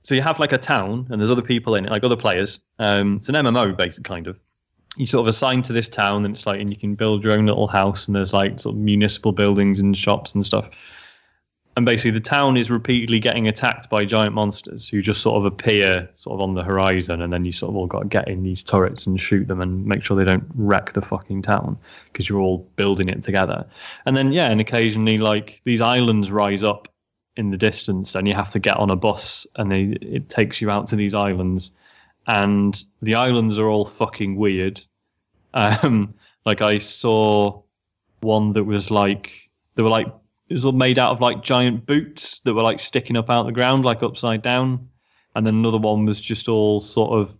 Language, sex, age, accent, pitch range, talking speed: English, male, 20-39, British, 100-115 Hz, 225 wpm